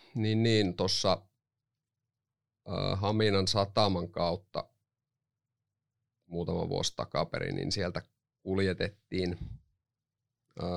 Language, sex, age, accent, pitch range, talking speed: Finnish, male, 30-49, native, 90-120 Hz, 70 wpm